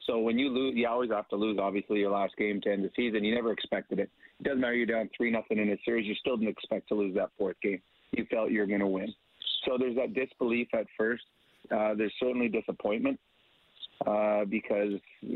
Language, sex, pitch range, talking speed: English, male, 105-120 Hz, 230 wpm